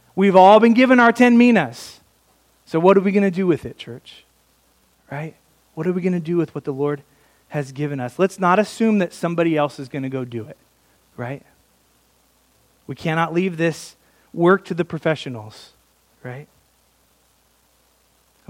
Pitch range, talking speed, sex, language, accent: 135-170 Hz, 175 wpm, male, English, American